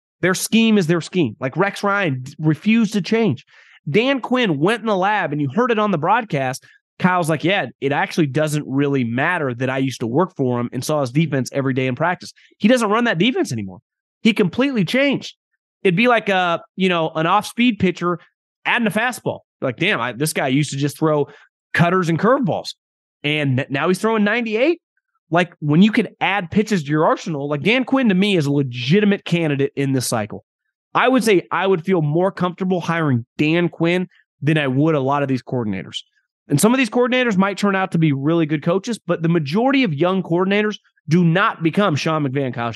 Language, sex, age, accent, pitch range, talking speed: English, male, 30-49, American, 145-205 Hz, 210 wpm